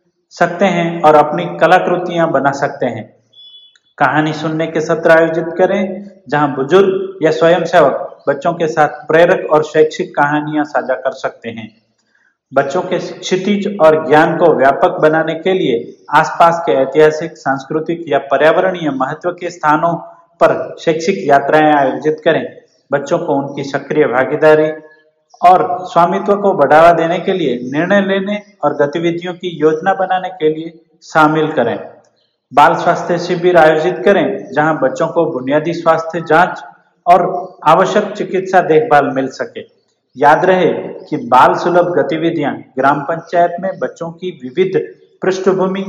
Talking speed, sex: 140 wpm, male